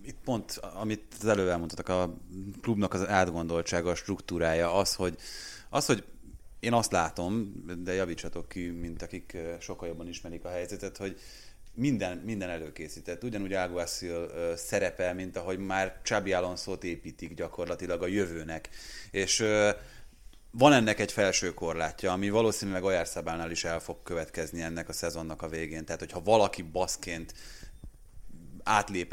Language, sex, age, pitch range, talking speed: Hungarian, male, 30-49, 85-100 Hz, 140 wpm